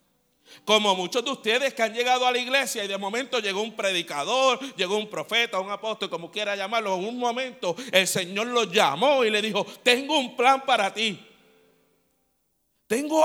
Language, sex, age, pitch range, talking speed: Spanish, male, 50-69, 150-220 Hz, 180 wpm